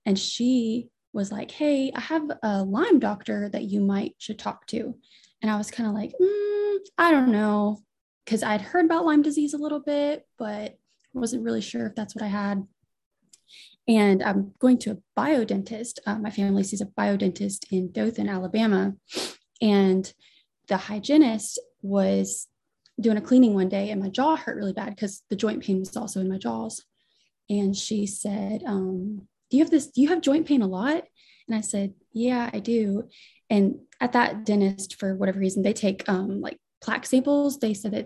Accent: American